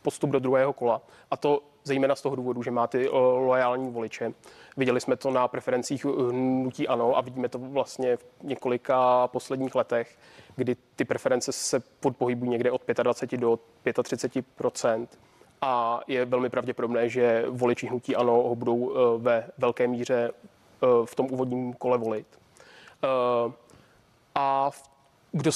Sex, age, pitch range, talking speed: male, 30-49, 125-140 Hz, 140 wpm